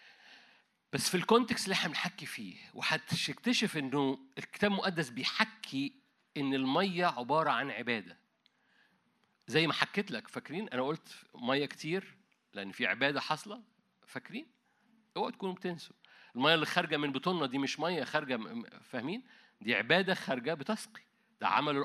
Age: 50-69